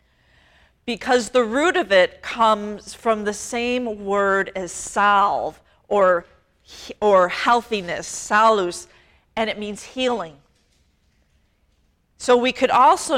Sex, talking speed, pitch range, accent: female, 110 wpm, 195-245 Hz, American